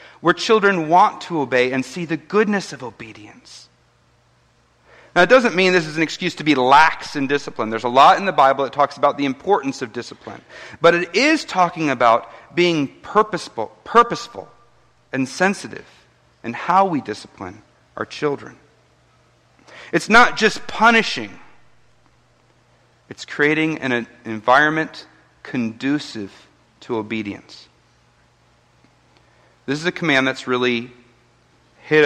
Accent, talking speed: American, 135 wpm